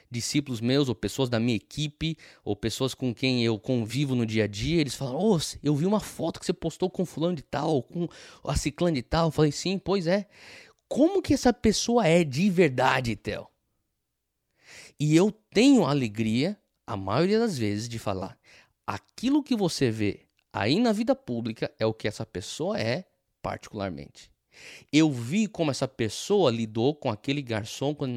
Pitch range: 115-170 Hz